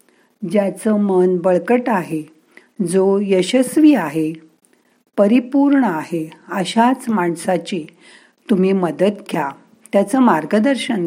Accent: native